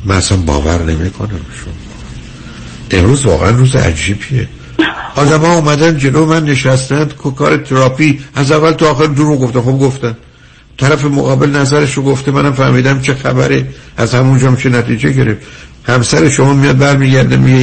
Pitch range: 95-130 Hz